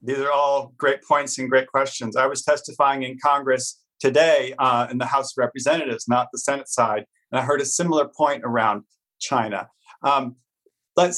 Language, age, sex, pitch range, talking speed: English, 30-49, male, 130-170 Hz, 185 wpm